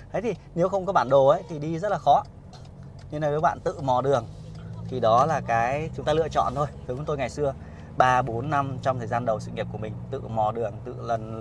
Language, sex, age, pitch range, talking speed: Vietnamese, male, 20-39, 115-145 Hz, 270 wpm